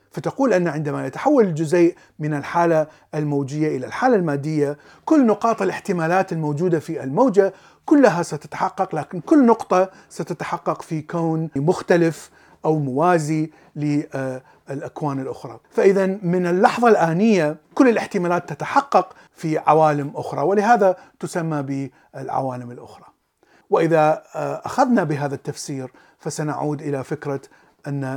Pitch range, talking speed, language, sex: 150-195 Hz, 110 wpm, Arabic, male